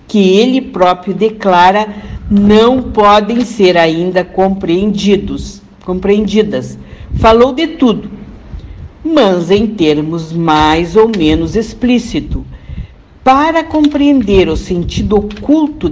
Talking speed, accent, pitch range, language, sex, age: 90 wpm, Brazilian, 175-235 Hz, Portuguese, female, 60-79